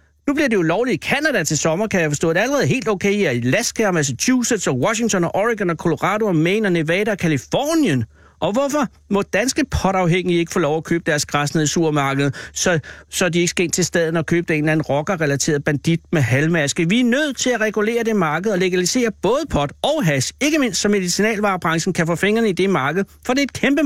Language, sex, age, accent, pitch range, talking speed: Danish, male, 60-79, native, 160-210 Hz, 235 wpm